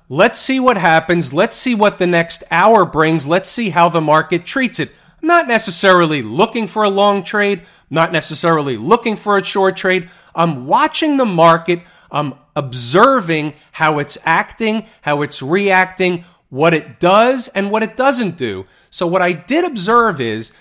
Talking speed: 170 wpm